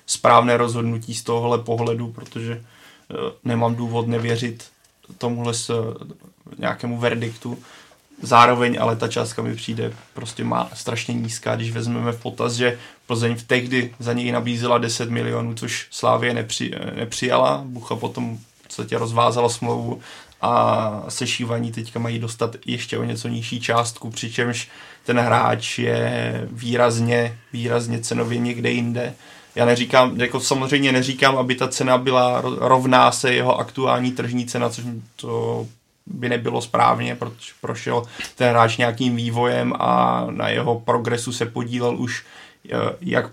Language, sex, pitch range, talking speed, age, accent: Czech, male, 115-120 Hz, 135 wpm, 20-39, native